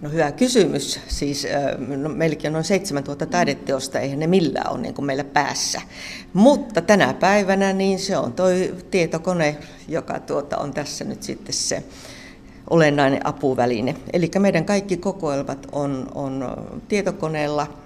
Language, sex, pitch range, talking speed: Finnish, female, 135-180 Hz, 140 wpm